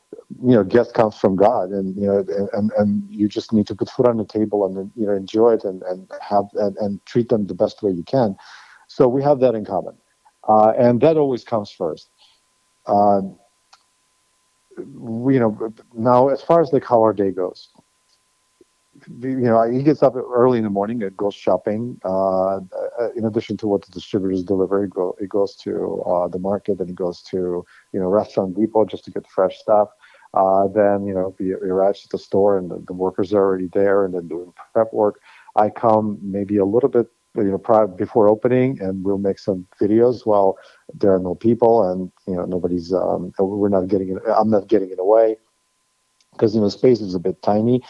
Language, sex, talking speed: English, male, 210 wpm